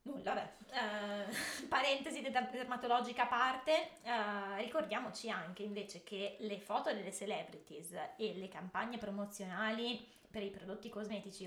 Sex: female